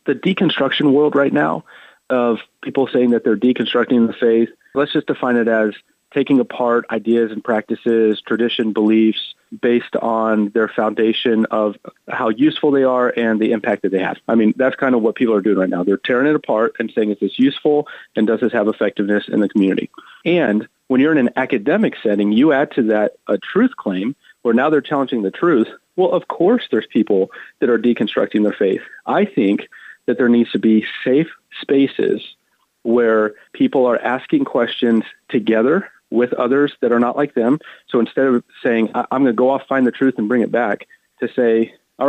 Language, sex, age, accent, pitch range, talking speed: English, male, 30-49, American, 110-135 Hz, 200 wpm